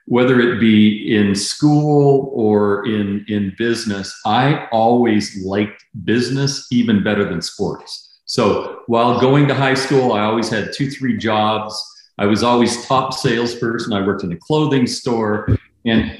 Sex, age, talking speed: male, 40-59, 150 wpm